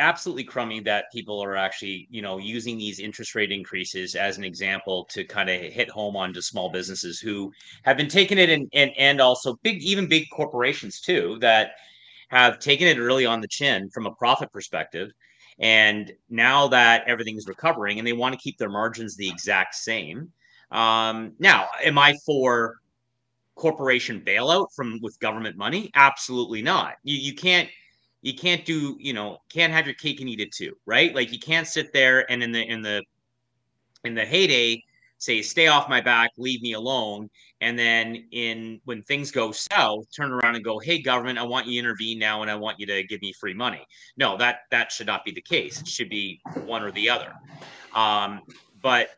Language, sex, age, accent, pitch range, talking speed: English, male, 30-49, American, 105-135 Hz, 200 wpm